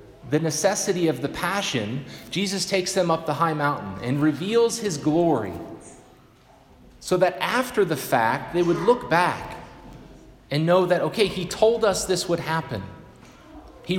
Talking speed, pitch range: 155 wpm, 140-195 Hz